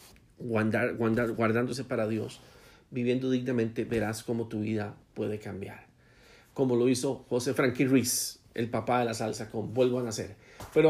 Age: 50-69